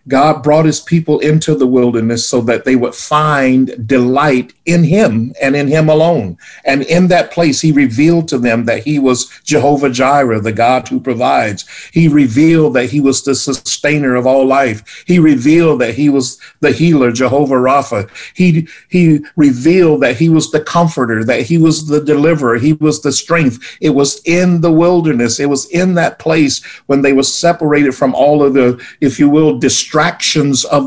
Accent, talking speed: American, 185 wpm